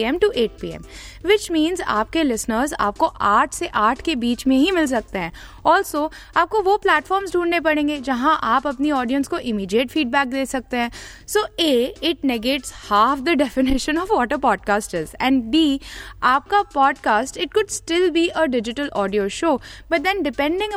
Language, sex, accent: Hindi, female, native